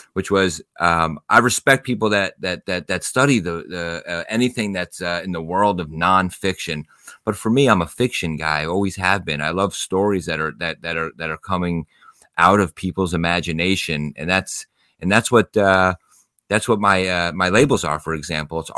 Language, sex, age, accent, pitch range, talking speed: English, male, 30-49, American, 80-100 Hz, 205 wpm